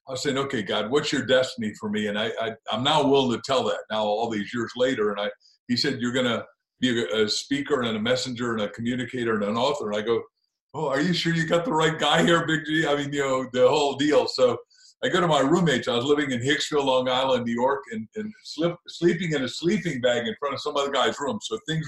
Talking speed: 260 wpm